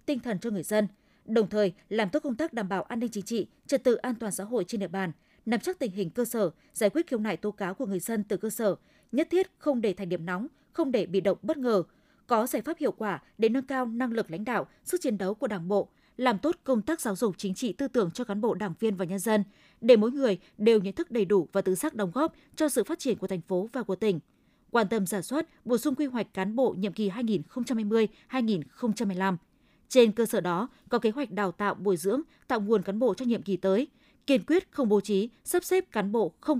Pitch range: 200-260 Hz